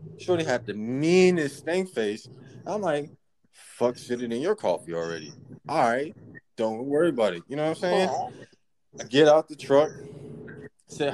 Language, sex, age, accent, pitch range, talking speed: English, male, 20-39, American, 120-150 Hz, 160 wpm